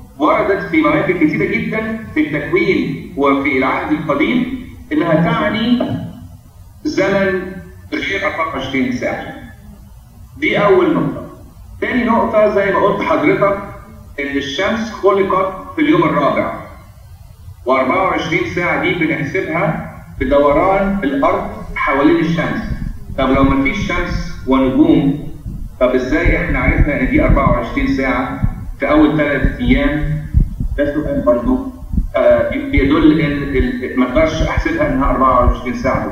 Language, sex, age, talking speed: Arabic, male, 40-59, 115 wpm